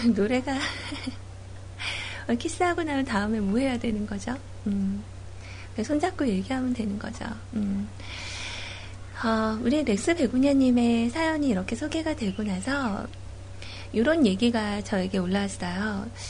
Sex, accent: female, native